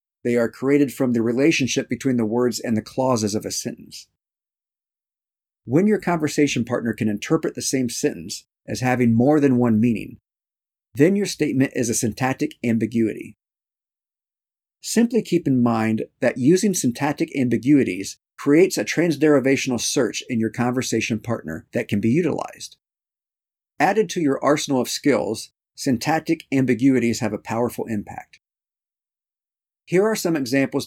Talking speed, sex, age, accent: 140 wpm, male, 50-69, American